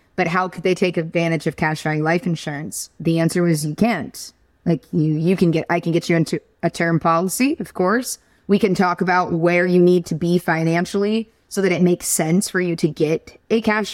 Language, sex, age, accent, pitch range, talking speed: English, female, 20-39, American, 175-225 Hz, 225 wpm